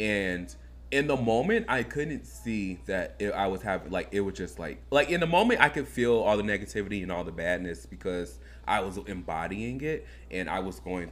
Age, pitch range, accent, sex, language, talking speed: 20-39, 75-105 Hz, American, male, English, 210 wpm